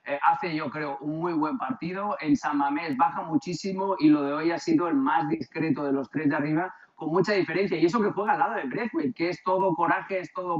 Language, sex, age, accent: Spanish, male, 30-49, Spanish